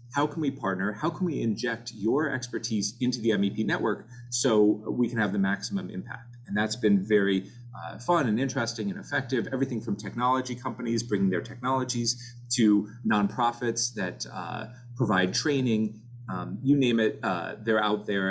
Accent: American